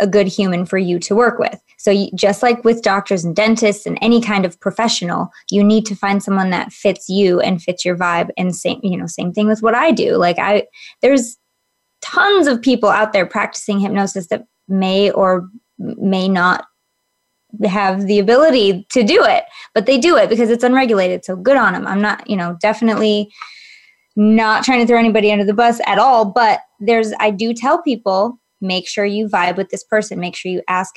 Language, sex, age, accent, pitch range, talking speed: English, female, 20-39, American, 185-235 Hz, 205 wpm